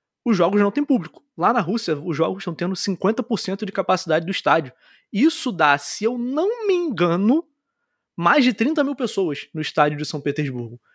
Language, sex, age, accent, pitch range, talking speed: Portuguese, male, 20-39, Brazilian, 160-245 Hz, 185 wpm